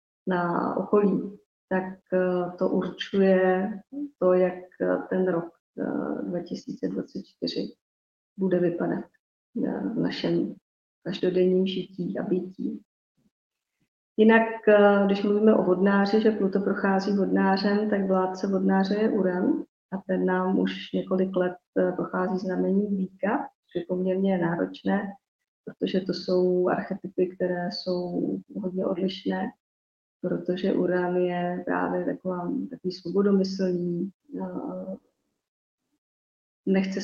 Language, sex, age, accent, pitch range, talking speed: Czech, female, 30-49, native, 175-195 Hz, 100 wpm